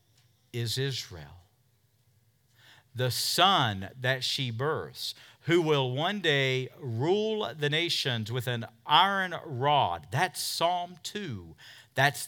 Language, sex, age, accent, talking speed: English, male, 50-69, American, 110 wpm